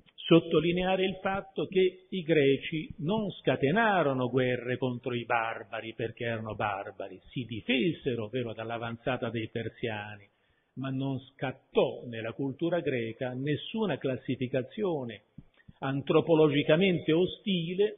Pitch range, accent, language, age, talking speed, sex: 125-170 Hz, native, Italian, 50-69, 105 wpm, male